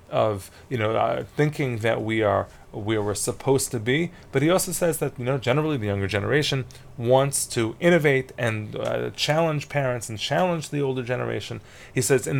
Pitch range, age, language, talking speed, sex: 115-150 Hz, 30-49, English, 190 wpm, male